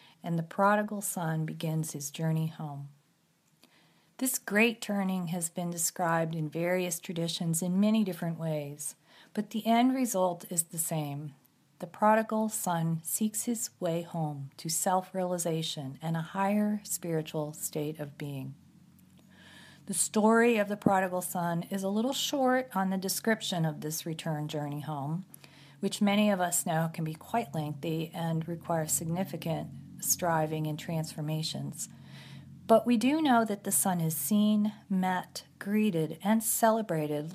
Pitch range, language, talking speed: 160-200 Hz, English, 145 wpm